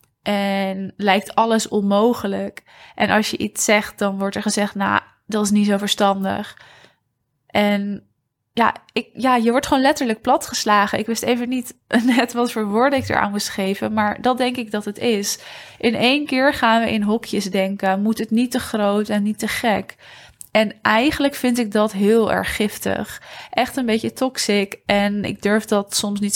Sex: female